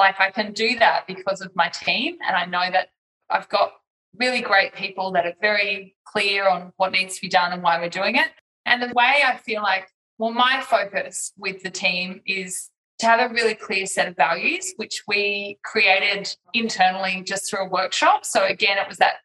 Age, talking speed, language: 20-39, 210 wpm, English